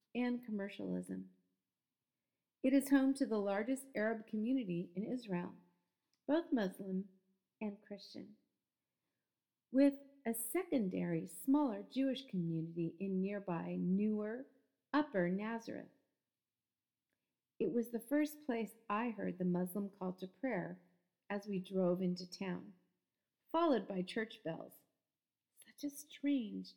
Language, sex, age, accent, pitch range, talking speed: English, female, 40-59, American, 185-275 Hz, 115 wpm